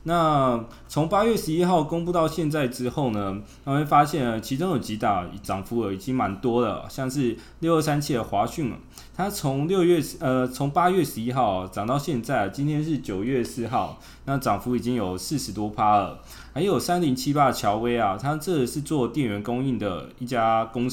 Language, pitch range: Chinese, 110-150 Hz